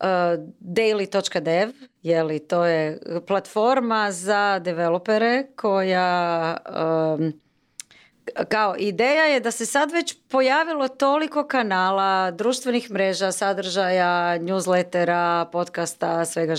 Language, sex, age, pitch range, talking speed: Croatian, female, 30-49, 170-215 Hz, 95 wpm